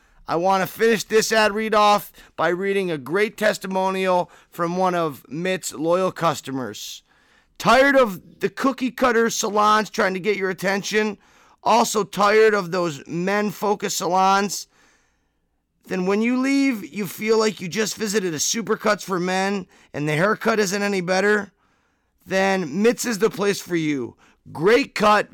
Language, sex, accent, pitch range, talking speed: English, male, American, 165-205 Hz, 150 wpm